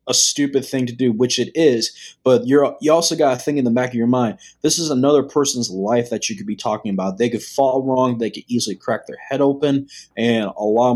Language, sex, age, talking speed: English, male, 20-39, 250 wpm